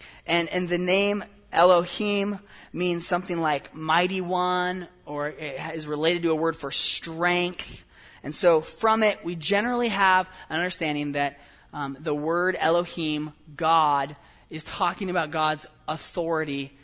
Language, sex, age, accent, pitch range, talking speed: English, male, 20-39, American, 140-180 Hz, 140 wpm